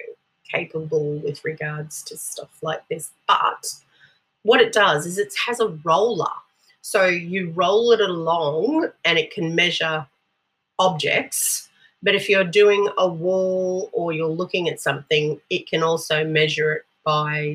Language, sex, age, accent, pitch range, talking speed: English, female, 30-49, Australian, 155-205 Hz, 145 wpm